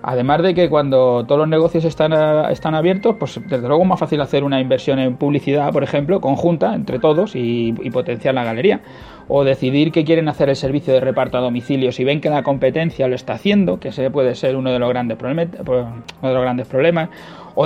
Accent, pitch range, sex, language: Spanish, 130-170 Hz, male, Spanish